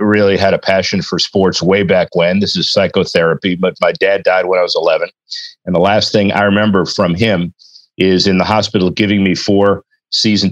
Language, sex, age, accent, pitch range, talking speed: English, male, 40-59, American, 90-105 Hz, 205 wpm